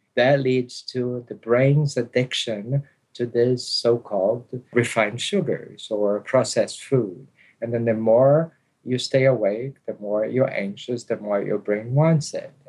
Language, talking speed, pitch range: English, 145 wpm, 110-135 Hz